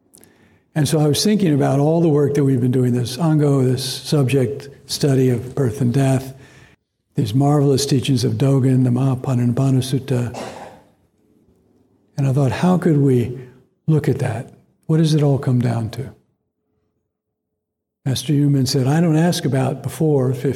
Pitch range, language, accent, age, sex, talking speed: 130-150 Hz, English, American, 60-79, male, 155 wpm